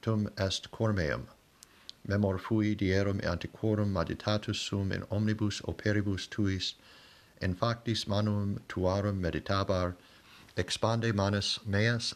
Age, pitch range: 50-69, 95-110 Hz